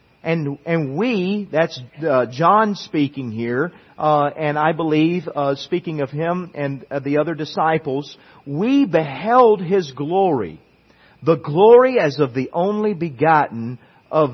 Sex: male